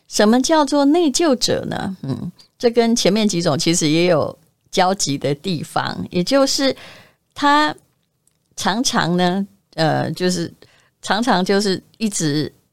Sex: female